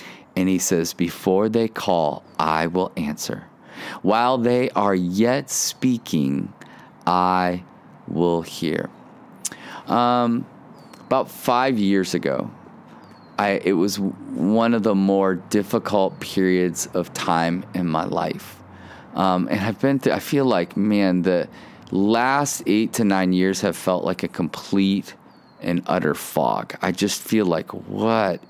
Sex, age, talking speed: male, 30-49, 135 wpm